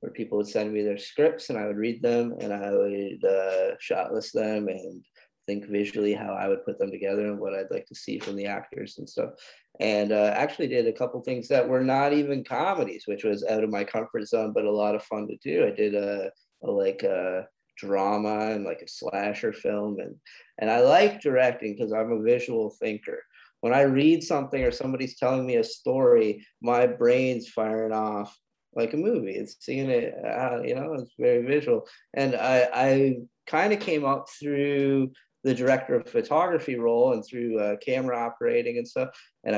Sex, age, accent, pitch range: male, 20-39, American, 105-145 Hz